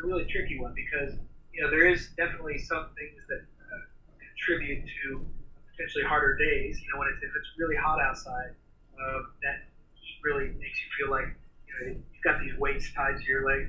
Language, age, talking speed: English, 30-49, 180 wpm